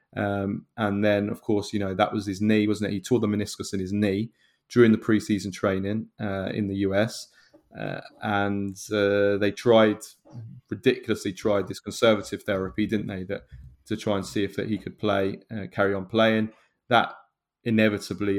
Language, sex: English, male